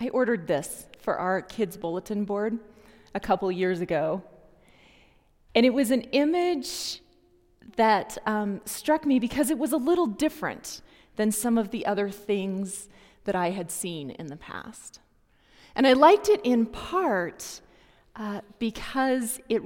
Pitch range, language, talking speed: 190-250 Hz, English, 150 wpm